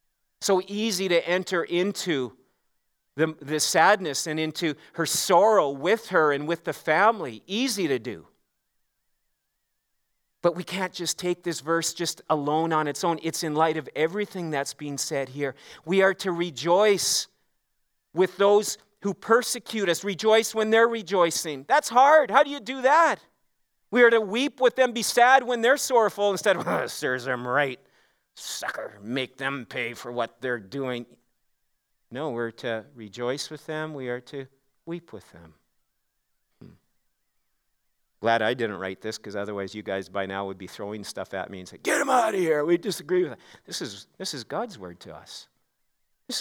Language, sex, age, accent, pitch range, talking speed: English, male, 40-59, American, 130-195 Hz, 175 wpm